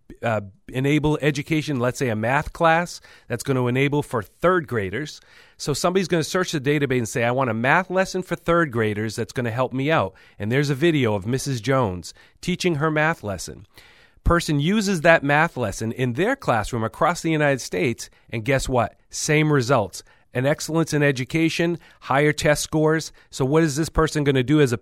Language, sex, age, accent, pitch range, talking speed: English, male, 40-59, American, 120-160 Hz, 200 wpm